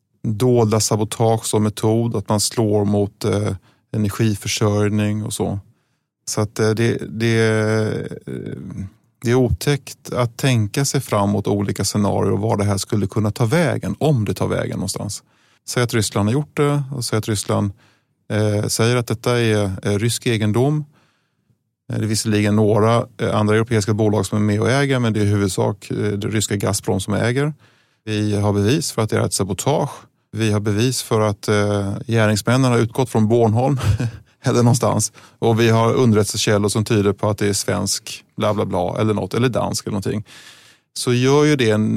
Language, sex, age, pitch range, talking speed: Swedish, male, 30-49, 105-120 Hz, 180 wpm